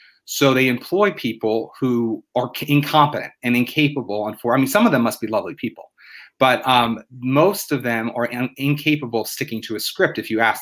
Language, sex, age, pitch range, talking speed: English, male, 30-49, 115-145 Hz, 185 wpm